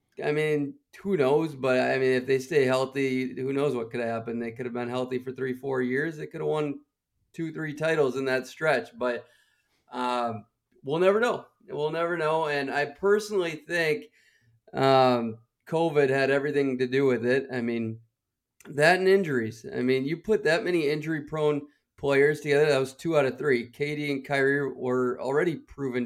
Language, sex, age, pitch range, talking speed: English, male, 30-49, 130-155 Hz, 185 wpm